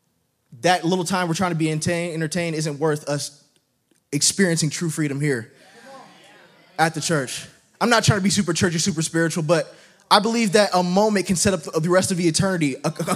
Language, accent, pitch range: English, American, 170-270 Hz